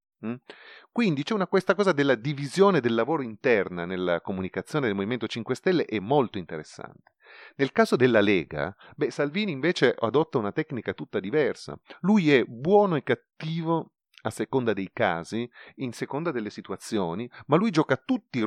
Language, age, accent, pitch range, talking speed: Italian, 30-49, native, 100-150 Hz, 155 wpm